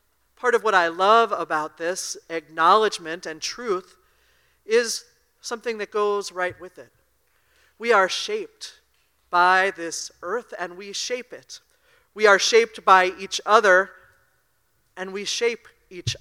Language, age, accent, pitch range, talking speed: English, 40-59, American, 180-235 Hz, 135 wpm